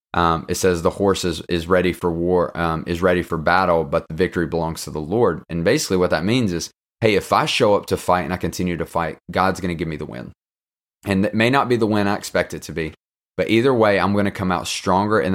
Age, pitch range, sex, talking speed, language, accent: 30-49, 85-100 Hz, male, 270 wpm, English, American